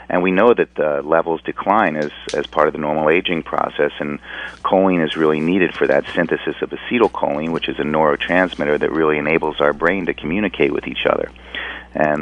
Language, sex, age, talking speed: English, male, 40-59, 195 wpm